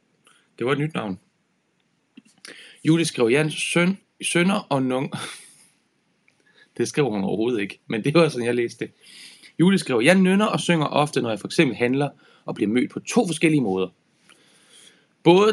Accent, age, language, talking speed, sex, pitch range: native, 30-49, Danish, 150 wpm, male, 135-180 Hz